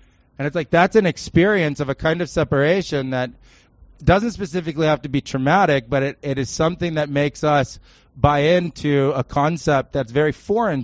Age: 30-49